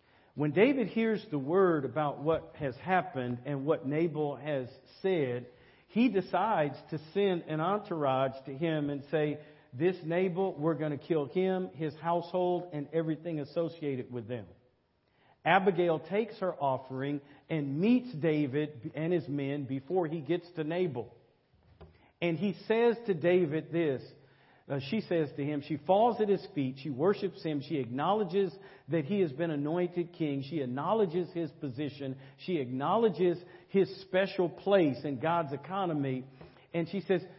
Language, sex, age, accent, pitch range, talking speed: English, male, 50-69, American, 140-180 Hz, 150 wpm